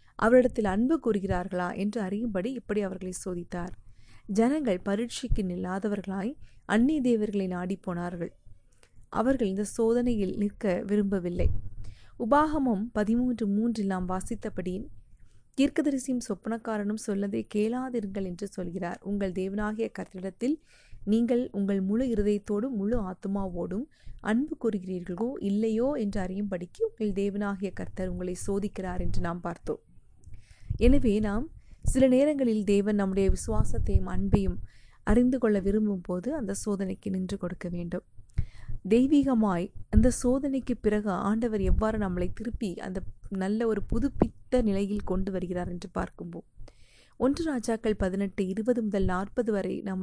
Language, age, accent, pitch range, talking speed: Tamil, 30-49, native, 180-225 Hz, 110 wpm